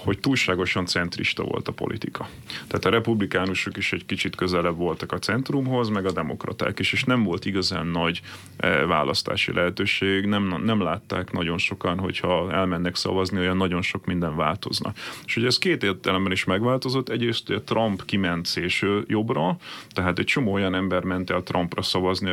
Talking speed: 165 wpm